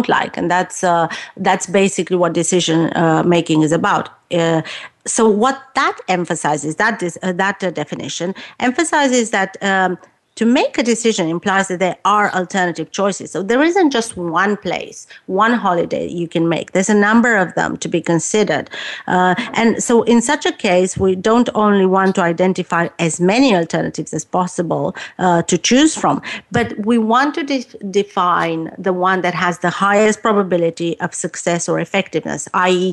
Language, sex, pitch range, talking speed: English, female, 170-210 Hz, 170 wpm